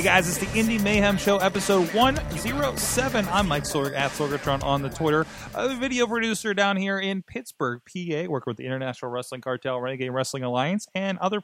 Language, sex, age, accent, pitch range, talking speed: English, male, 20-39, American, 125-180 Hz, 195 wpm